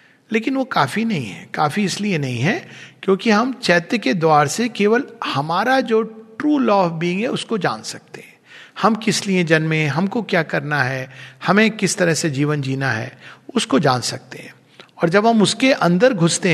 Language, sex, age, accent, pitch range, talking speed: Hindi, male, 50-69, native, 150-200 Hz, 190 wpm